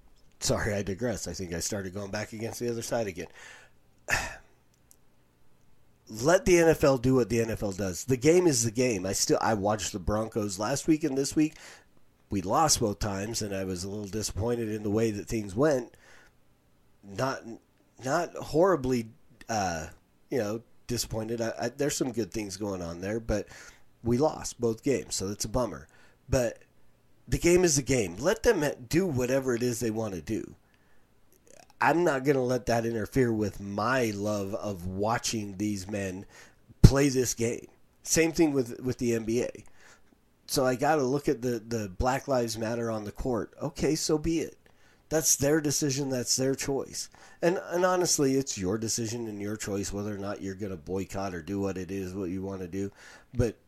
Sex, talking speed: male, 185 wpm